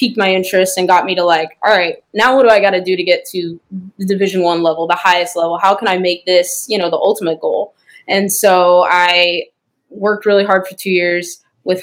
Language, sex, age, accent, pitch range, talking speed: English, female, 10-29, American, 175-205 Hz, 240 wpm